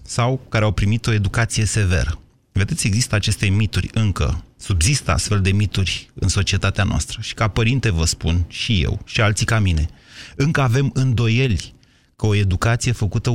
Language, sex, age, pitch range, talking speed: Romanian, male, 30-49, 95-115 Hz, 165 wpm